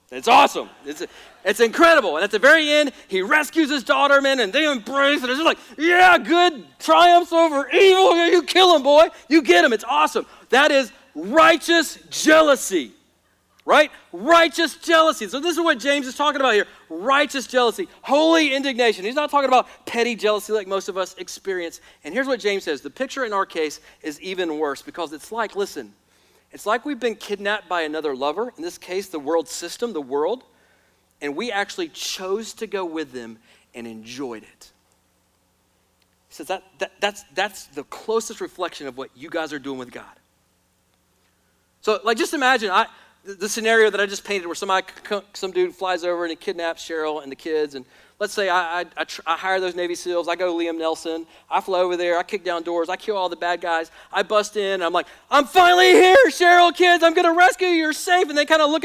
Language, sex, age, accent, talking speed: English, male, 40-59, American, 210 wpm